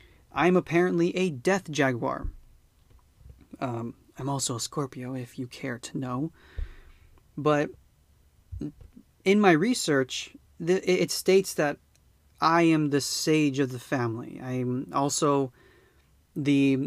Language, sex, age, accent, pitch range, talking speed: English, male, 30-49, American, 120-155 Hz, 115 wpm